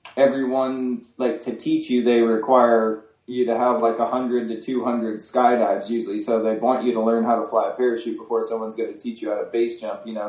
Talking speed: 225 wpm